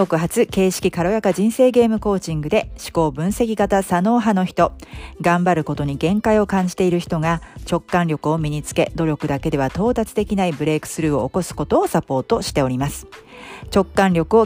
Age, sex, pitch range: 40-59, female, 155-205 Hz